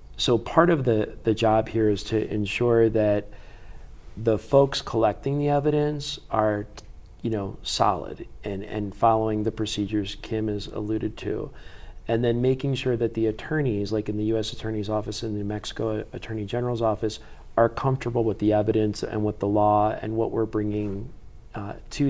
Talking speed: 175 wpm